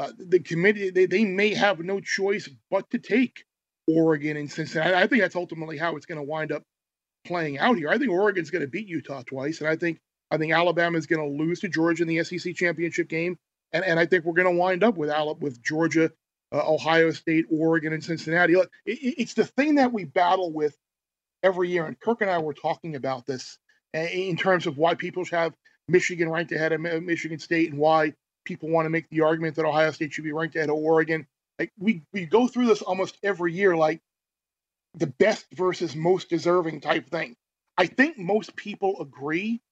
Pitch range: 160-200 Hz